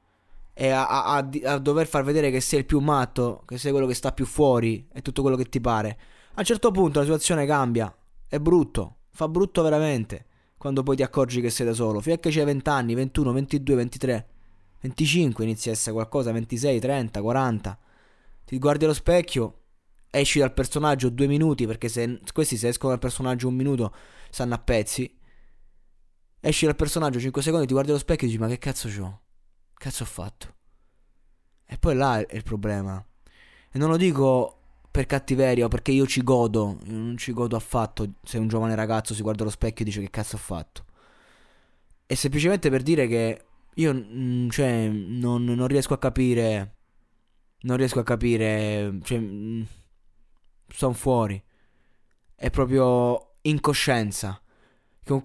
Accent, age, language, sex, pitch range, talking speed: native, 20-39, Italian, male, 110-140 Hz, 175 wpm